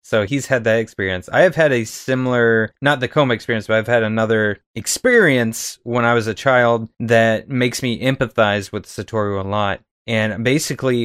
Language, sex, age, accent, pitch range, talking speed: English, male, 20-39, American, 110-130 Hz, 185 wpm